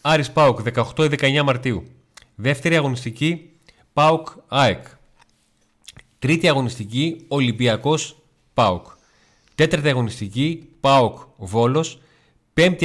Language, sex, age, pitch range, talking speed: Greek, male, 30-49, 110-150 Hz, 75 wpm